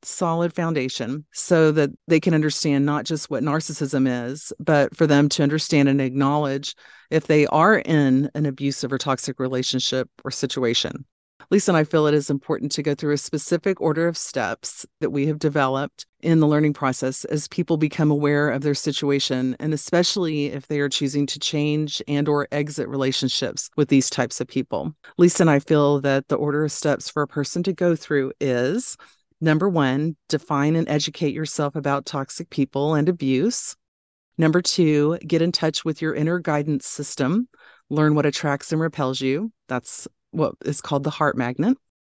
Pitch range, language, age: 140-160 Hz, English, 40-59